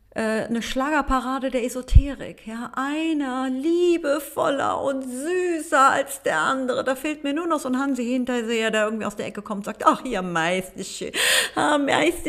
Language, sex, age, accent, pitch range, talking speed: German, female, 40-59, German, 205-265 Hz, 155 wpm